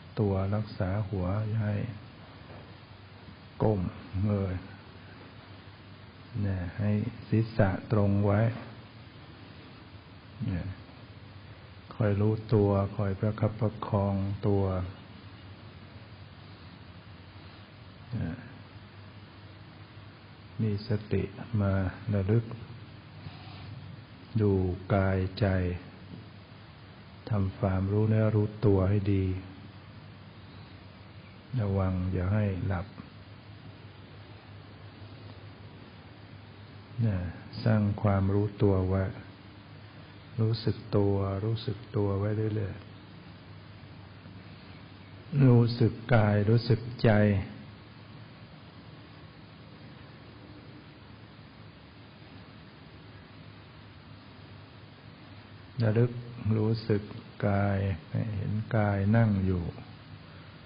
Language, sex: English, male